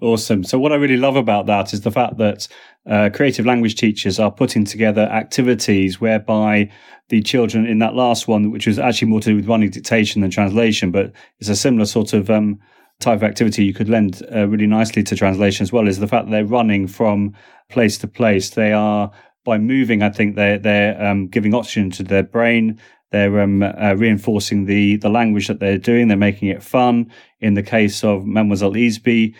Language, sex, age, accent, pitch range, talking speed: English, male, 30-49, British, 100-115 Hz, 210 wpm